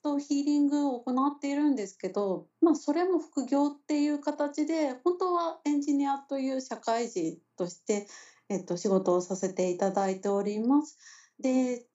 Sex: female